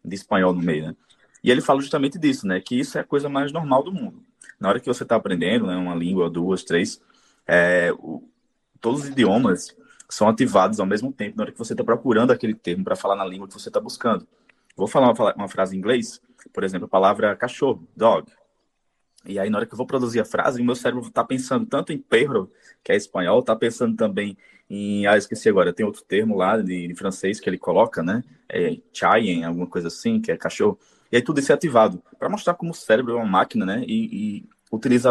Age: 20-39